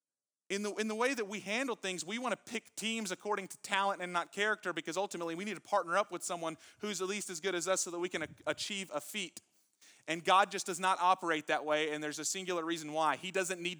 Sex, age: male, 30-49